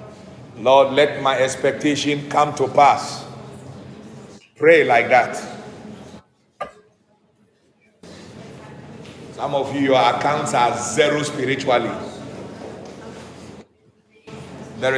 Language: English